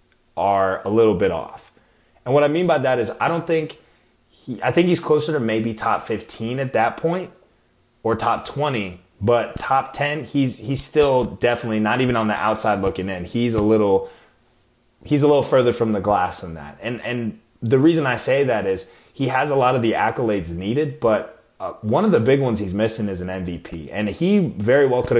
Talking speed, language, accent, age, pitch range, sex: 210 wpm, English, American, 20-39, 110-135 Hz, male